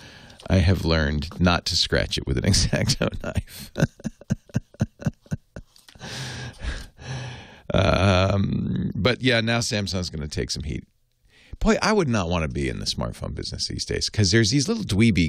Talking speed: 155 wpm